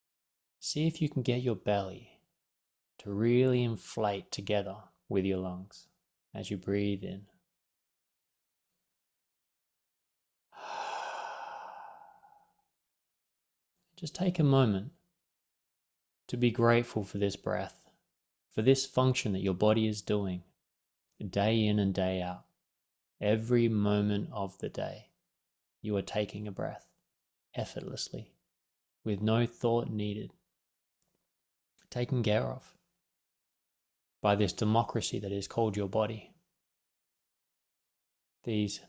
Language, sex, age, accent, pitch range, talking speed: English, male, 20-39, Australian, 100-120 Hz, 105 wpm